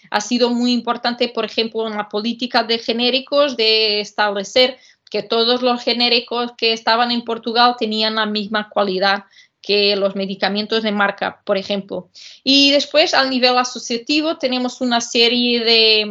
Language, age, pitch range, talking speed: Spanish, 20-39, 205-245 Hz, 155 wpm